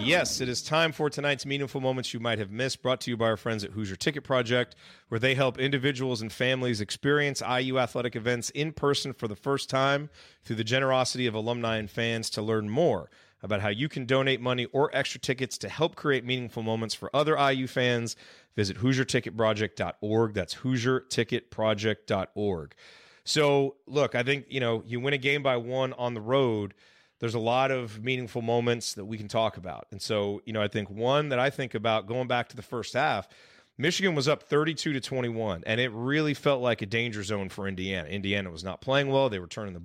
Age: 30-49